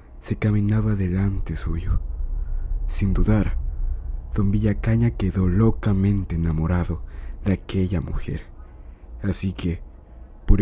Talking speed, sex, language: 95 wpm, male, Spanish